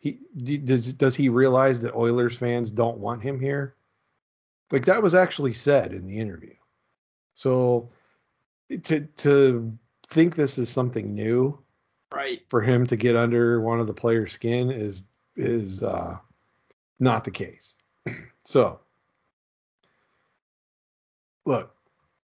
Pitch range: 105-130 Hz